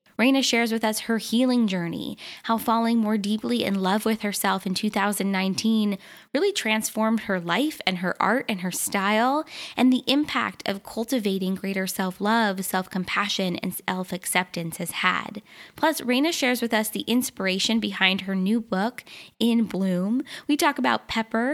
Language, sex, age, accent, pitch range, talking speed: English, female, 10-29, American, 200-245 Hz, 155 wpm